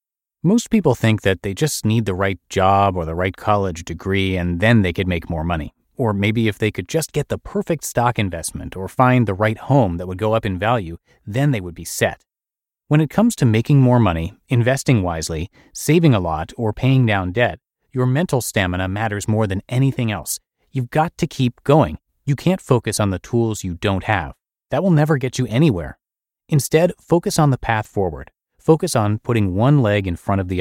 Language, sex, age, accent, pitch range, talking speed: English, male, 30-49, American, 95-130 Hz, 210 wpm